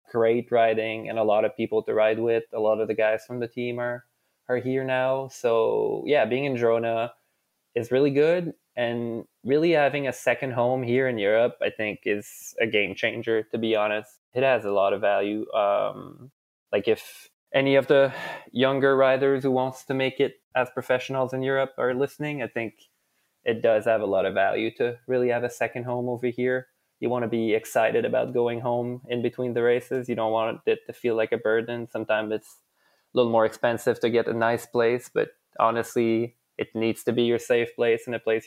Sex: male